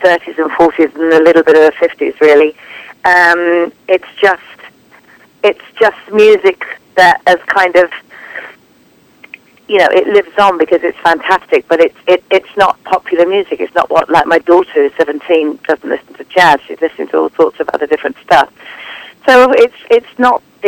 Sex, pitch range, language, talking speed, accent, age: female, 170-255 Hz, English, 175 wpm, British, 40-59